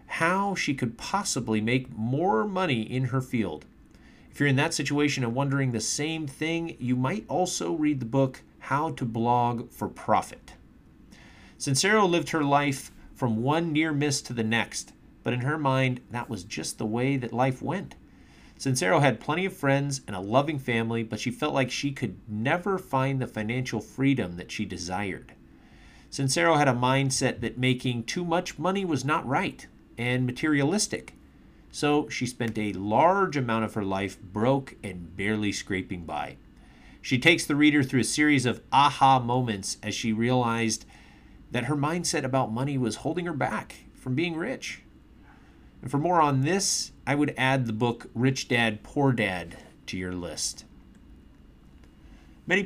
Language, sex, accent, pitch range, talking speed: English, male, American, 110-145 Hz, 170 wpm